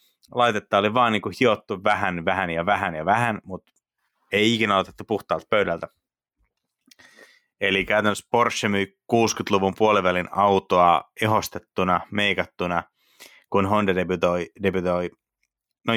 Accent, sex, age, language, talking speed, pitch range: native, male, 30-49, Finnish, 115 wpm, 90-105 Hz